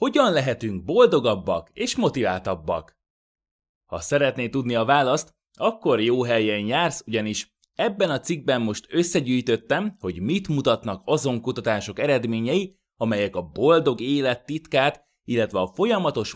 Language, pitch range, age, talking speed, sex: Hungarian, 110-170 Hz, 20-39, 125 wpm, male